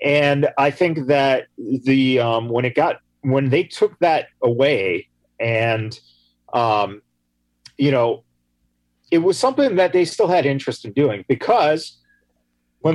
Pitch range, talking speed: 105-150 Hz, 140 wpm